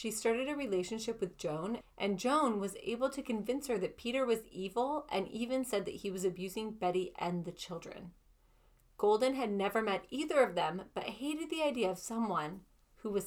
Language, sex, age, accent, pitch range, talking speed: English, female, 30-49, American, 185-260 Hz, 195 wpm